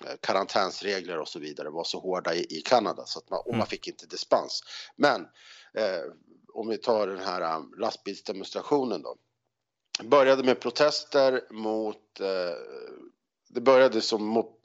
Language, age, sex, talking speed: Swedish, 50-69, male, 145 wpm